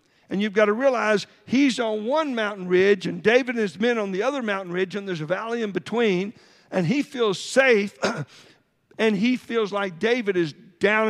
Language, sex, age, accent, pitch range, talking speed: English, male, 50-69, American, 185-230 Hz, 200 wpm